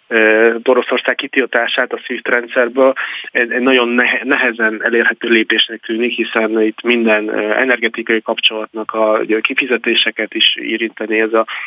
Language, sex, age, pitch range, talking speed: Hungarian, male, 20-39, 115-125 Hz, 110 wpm